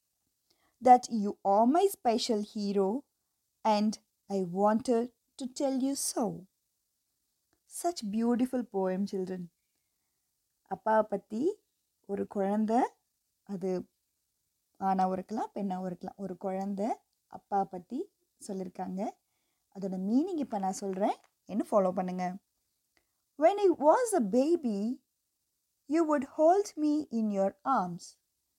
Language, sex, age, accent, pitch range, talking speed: Tamil, female, 20-39, native, 195-305 Hz, 115 wpm